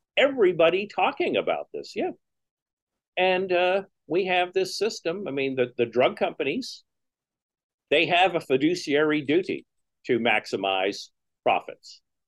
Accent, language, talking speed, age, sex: American, English, 120 wpm, 50-69, male